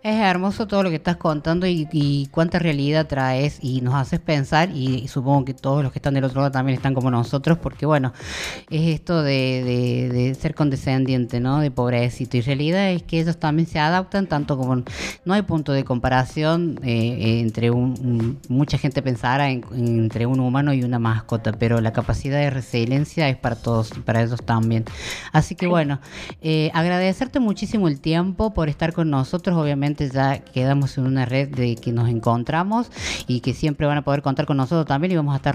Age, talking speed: 20-39, 200 wpm